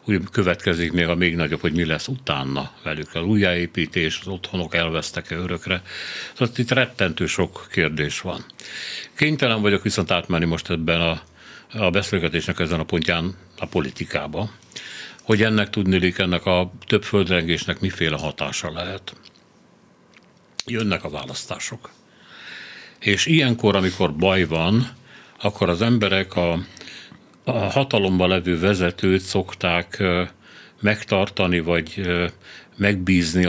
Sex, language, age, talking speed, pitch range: male, Hungarian, 60-79, 120 wpm, 85-105 Hz